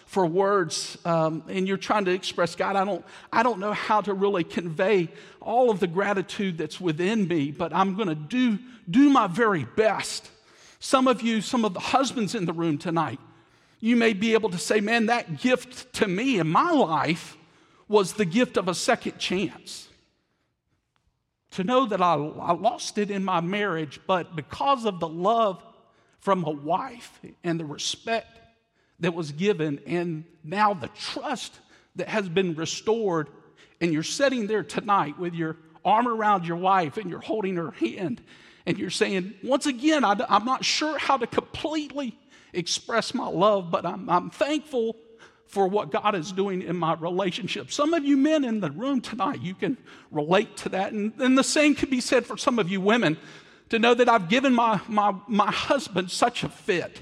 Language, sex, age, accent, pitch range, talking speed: English, male, 50-69, American, 175-235 Hz, 185 wpm